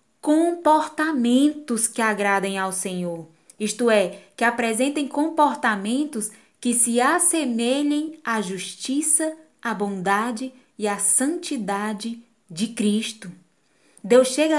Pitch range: 210-260 Hz